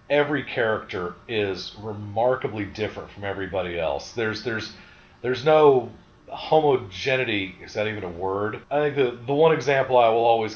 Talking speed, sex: 155 wpm, male